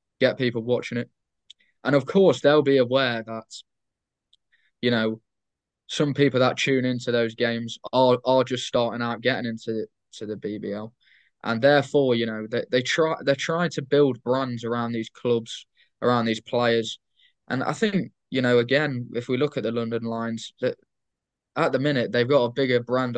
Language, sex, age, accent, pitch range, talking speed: English, male, 10-29, British, 115-135 Hz, 180 wpm